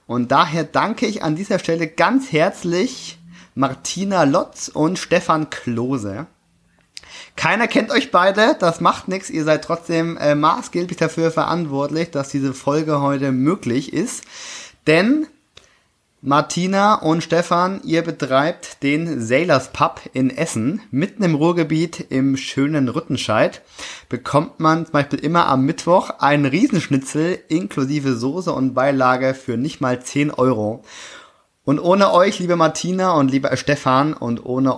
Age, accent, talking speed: 30-49, German, 135 wpm